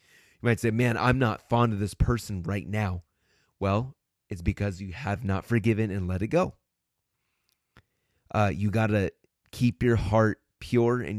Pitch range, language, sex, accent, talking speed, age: 95-110 Hz, English, male, American, 170 wpm, 30-49